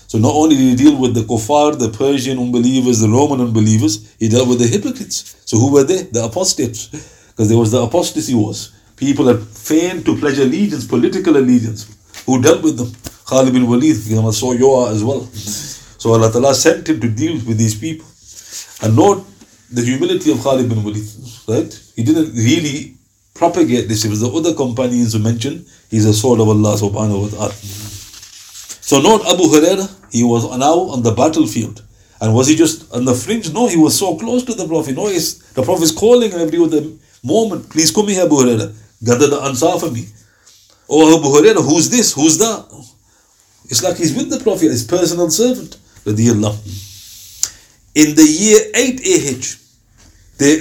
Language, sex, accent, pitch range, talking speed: English, male, Indian, 110-160 Hz, 185 wpm